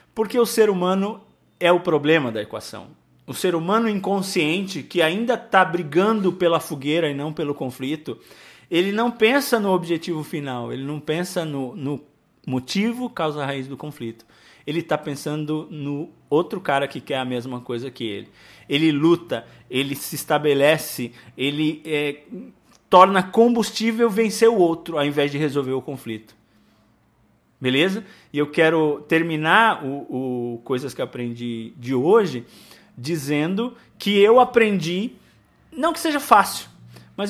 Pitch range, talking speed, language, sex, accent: 145-205 Hz, 145 wpm, Portuguese, male, Brazilian